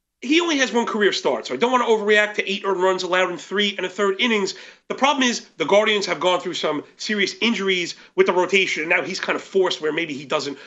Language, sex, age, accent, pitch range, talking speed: English, male, 40-59, American, 185-235 Hz, 260 wpm